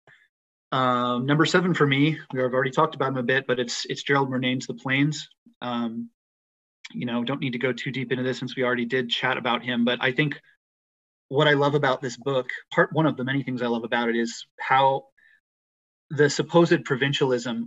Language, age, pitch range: English, 30-49, 120-140 Hz